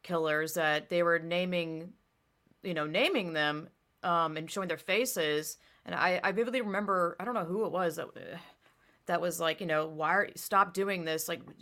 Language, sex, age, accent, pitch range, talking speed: English, female, 30-49, American, 165-195 Hz, 190 wpm